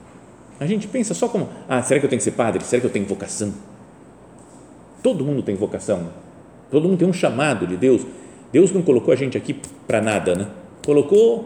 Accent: Brazilian